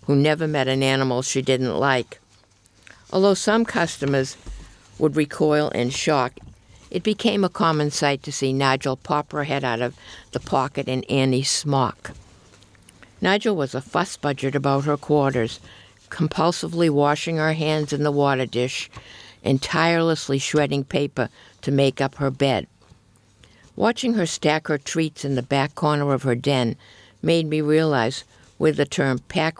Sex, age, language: female, 60-79, English